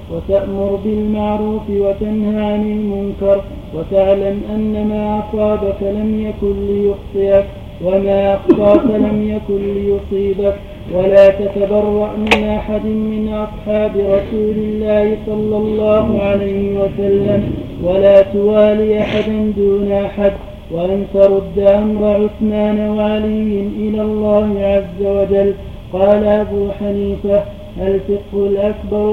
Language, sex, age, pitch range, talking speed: Arabic, male, 40-59, 200-215 Hz, 100 wpm